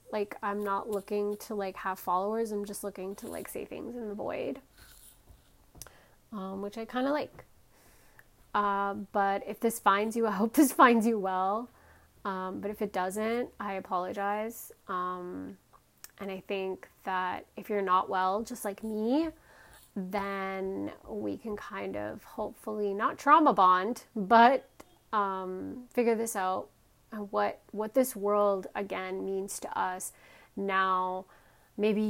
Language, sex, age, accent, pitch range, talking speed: English, female, 30-49, American, 185-210 Hz, 145 wpm